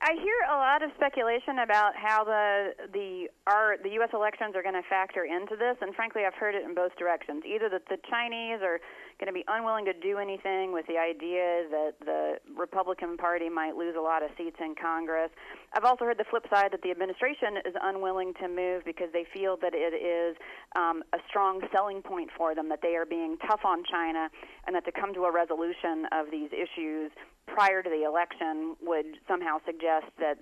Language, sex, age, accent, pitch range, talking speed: English, female, 40-59, American, 165-205 Hz, 210 wpm